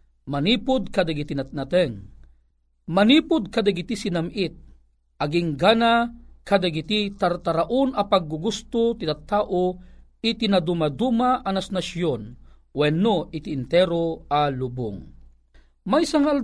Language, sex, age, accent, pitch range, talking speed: Filipino, male, 40-59, native, 145-225 Hz, 90 wpm